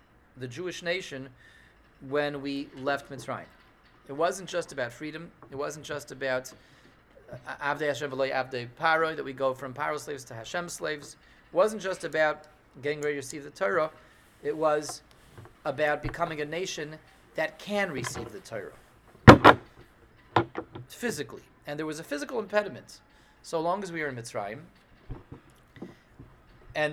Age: 30-49